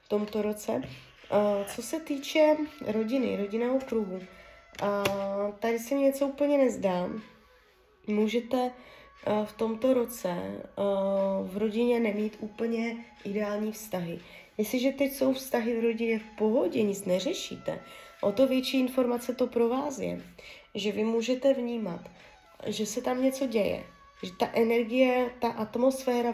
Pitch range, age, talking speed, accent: 190-235 Hz, 20-39, 130 wpm, native